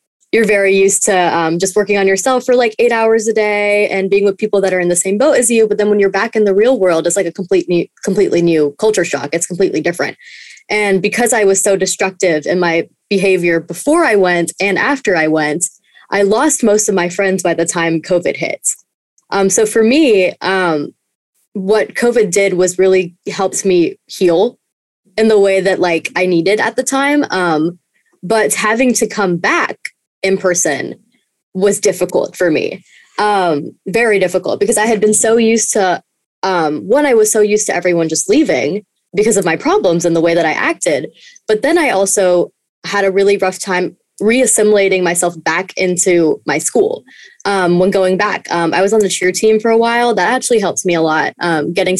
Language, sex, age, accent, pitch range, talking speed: English, female, 20-39, American, 180-215 Hz, 200 wpm